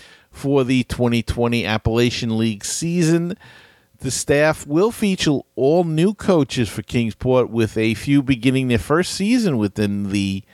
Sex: male